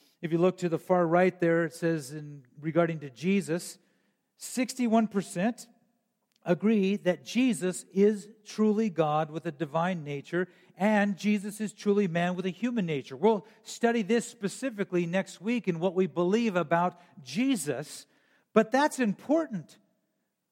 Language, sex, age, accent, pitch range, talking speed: English, male, 50-69, American, 170-225 Hz, 145 wpm